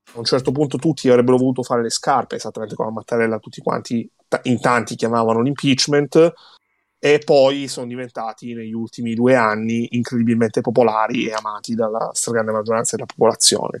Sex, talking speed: male, 155 wpm